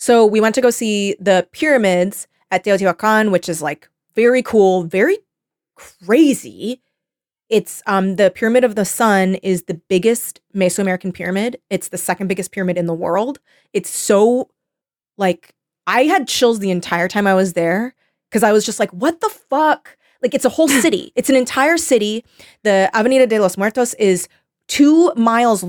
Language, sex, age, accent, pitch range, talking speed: English, female, 20-39, American, 190-270 Hz, 175 wpm